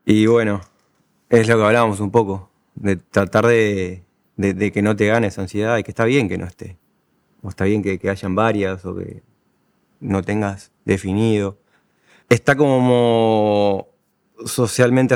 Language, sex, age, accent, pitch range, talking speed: Spanish, male, 20-39, Argentinian, 100-115 Hz, 160 wpm